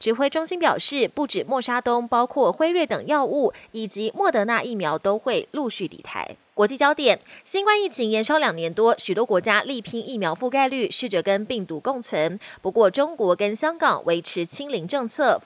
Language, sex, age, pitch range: Chinese, female, 20-39, 205-290 Hz